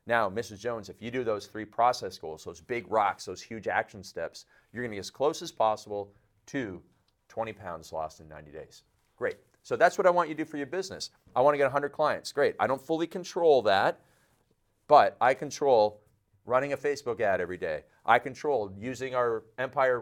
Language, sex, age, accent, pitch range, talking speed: English, male, 40-59, American, 110-145 Hz, 205 wpm